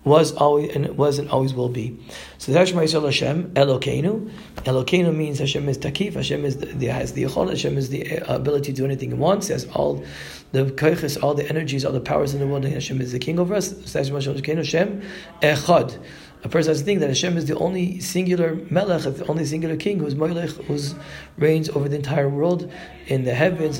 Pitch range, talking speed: 135-170 Hz, 220 wpm